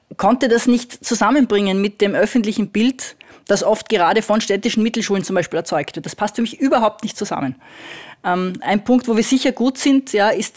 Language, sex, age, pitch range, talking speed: German, female, 20-39, 165-210 Hz, 200 wpm